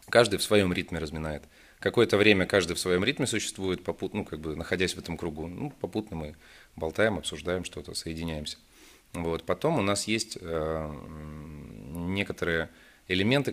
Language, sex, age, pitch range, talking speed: Russian, male, 30-49, 80-90 Hz, 145 wpm